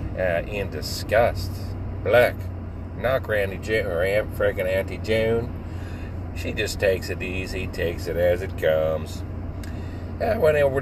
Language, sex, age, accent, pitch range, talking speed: English, male, 40-59, American, 95-115 Hz, 145 wpm